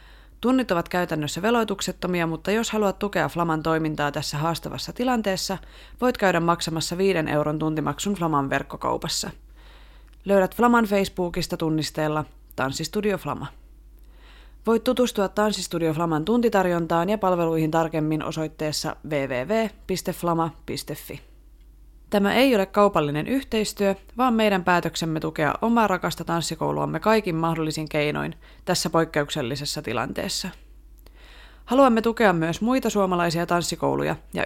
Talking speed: 105 wpm